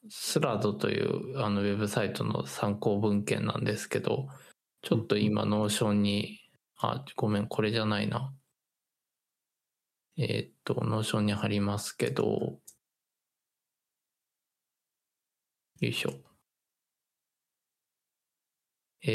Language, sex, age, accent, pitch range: Japanese, male, 20-39, native, 105-120 Hz